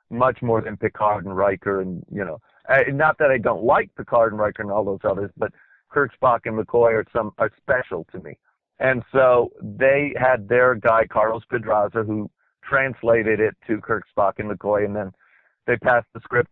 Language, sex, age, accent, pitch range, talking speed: English, male, 50-69, American, 105-120 Hz, 200 wpm